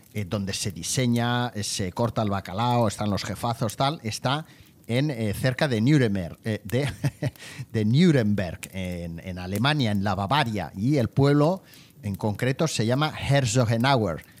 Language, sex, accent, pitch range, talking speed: Spanish, male, Spanish, 110-145 Hz, 150 wpm